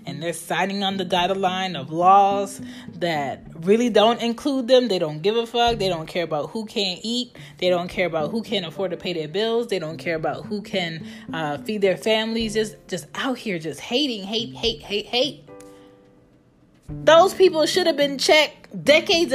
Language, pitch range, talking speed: English, 165-225 Hz, 195 wpm